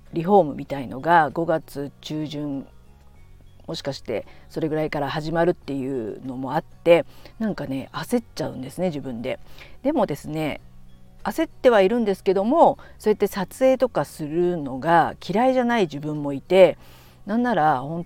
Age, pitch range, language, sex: 50-69, 135-180 Hz, Japanese, female